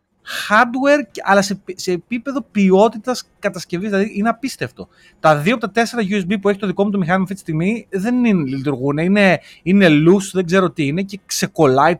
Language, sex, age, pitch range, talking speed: Greek, male, 30-49, 130-205 Hz, 195 wpm